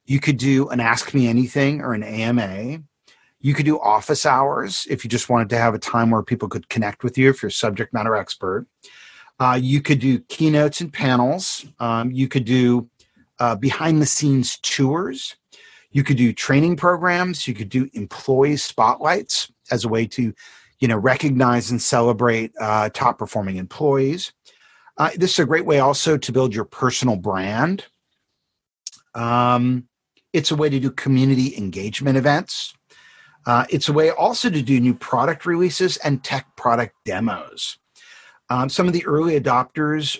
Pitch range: 120-145 Hz